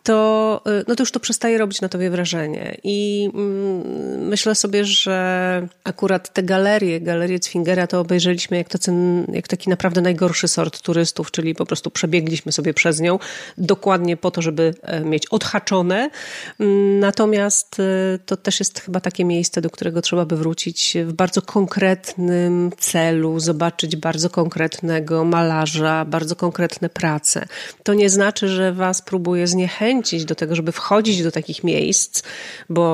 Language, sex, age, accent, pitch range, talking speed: Polish, female, 40-59, native, 170-205 Hz, 140 wpm